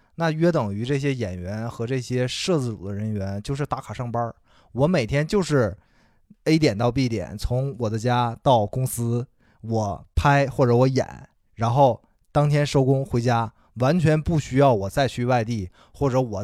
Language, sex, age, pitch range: Chinese, male, 20-39, 110-140 Hz